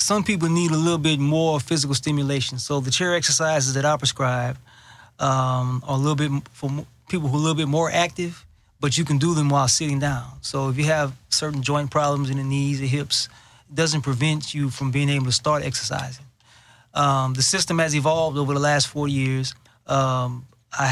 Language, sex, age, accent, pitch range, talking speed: English, male, 20-39, American, 130-155 Hz, 205 wpm